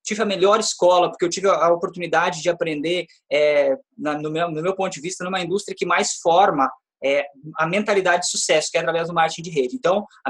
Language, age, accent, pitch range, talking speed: Portuguese, 20-39, Brazilian, 175-225 Hz, 225 wpm